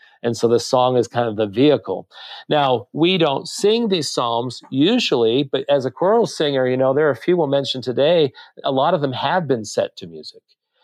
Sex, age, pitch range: male, 50-69, 120-160 Hz